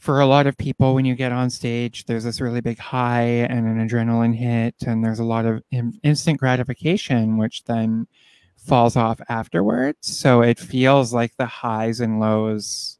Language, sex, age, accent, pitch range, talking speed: English, male, 20-39, American, 115-160 Hz, 180 wpm